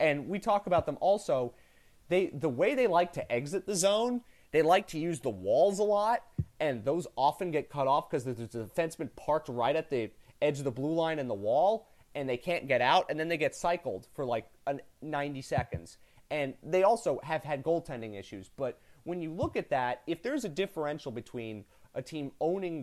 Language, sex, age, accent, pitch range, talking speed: English, male, 30-49, American, 125-170 Hz, 210 wpm